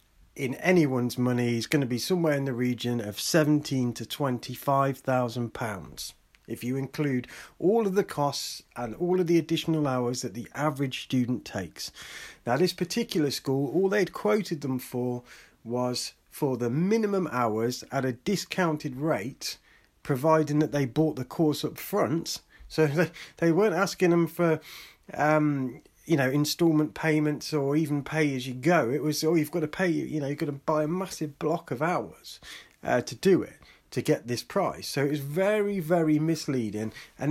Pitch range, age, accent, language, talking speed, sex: 130-180 Hz, 40-59, British, English, 180 wpm, male